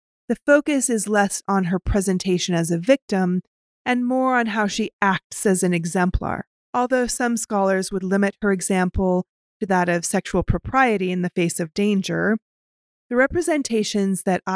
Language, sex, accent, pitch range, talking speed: English, female, American, 180-225 Hz, 160 wpm